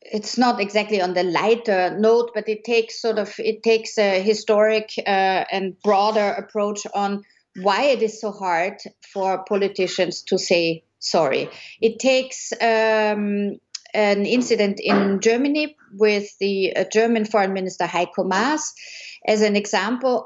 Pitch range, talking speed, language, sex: 190-225 Hz, 145 wpm, English, female